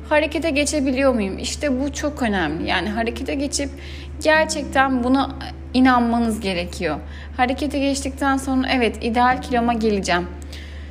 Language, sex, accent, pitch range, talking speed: Turkish, female, native, 215-280 Hz, 115 wpm